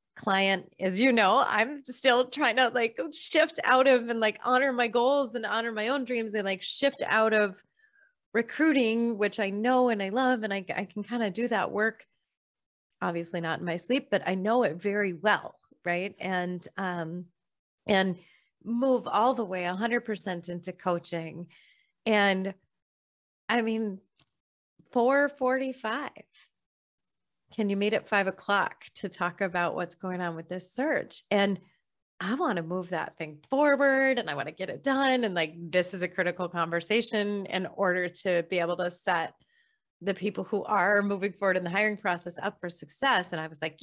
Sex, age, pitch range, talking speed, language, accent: female, 30-49, 180-255 Hz, 180 wpm, English, American